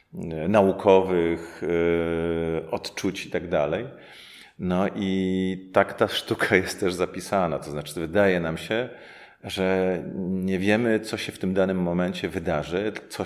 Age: 40-59